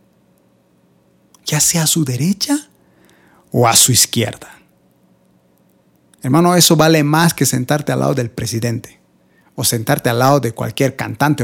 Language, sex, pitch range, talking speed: Spanish, male, 130-180 Hz, 135 wpm